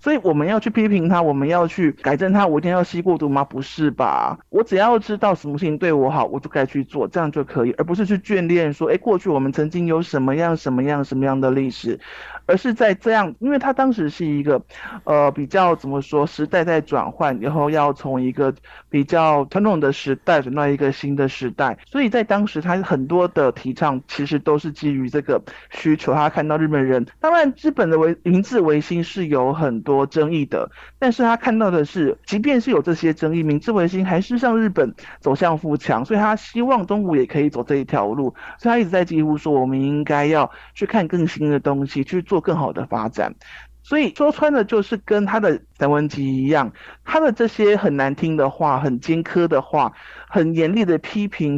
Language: Chinese